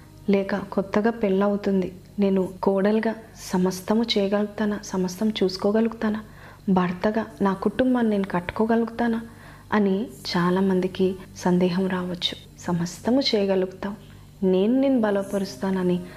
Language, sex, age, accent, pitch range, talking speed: Telugu, female, 30-49, native, 185-215 Hz, 85 wpm